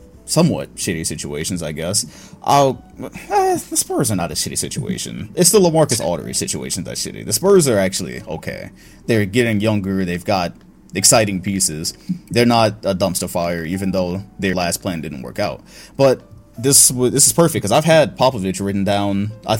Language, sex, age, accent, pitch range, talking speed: English, male, 20-39, American, 95-120 Hz, 175 wpm